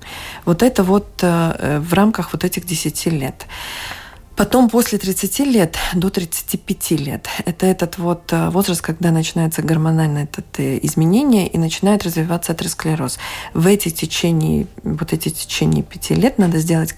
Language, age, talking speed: Russian, 40-59, 140 wpm